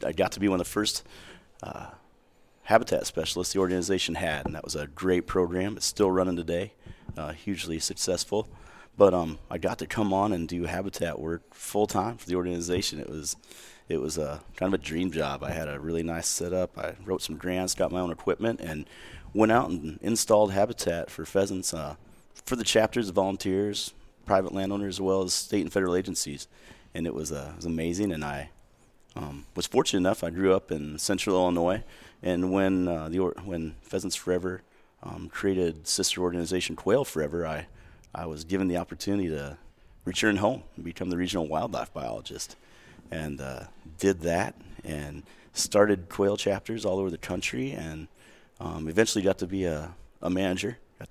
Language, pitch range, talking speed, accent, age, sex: English, 80-95 Hz, 185 wpm, American, 30-49, male